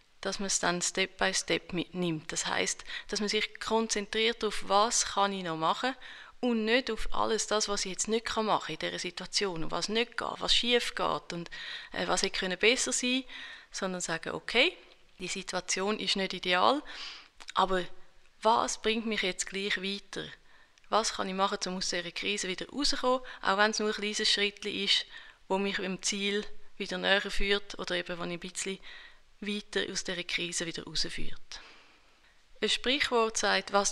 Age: 30-49